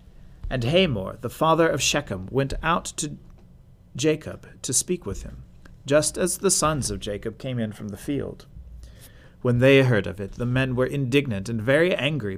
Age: 40-59